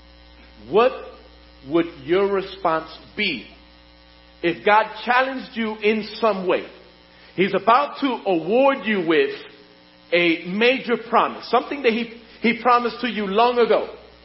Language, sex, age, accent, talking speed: English, male, 50-69, American, 125 wpm